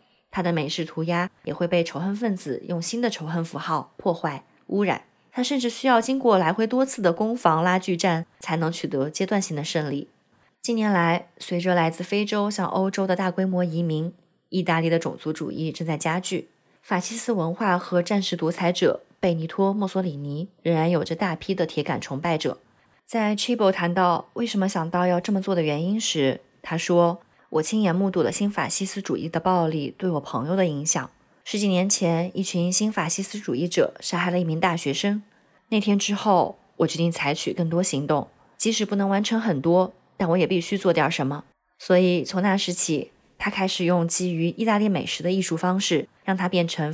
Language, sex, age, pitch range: Chinese, female, 20-39, 165-200 Hz